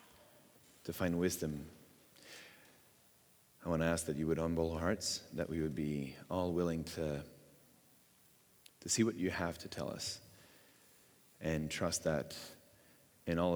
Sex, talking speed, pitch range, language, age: male, 140 wpm, 80-95 Hz, English, 30-49